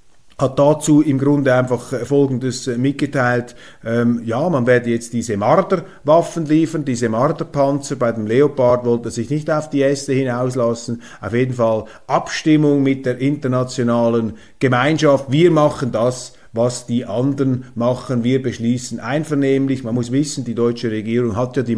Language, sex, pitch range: German, male, 115-140 Hz